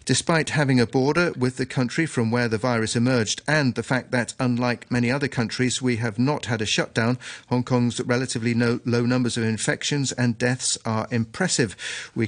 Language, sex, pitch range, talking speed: English, male, 115-130 Hz, 185 wpm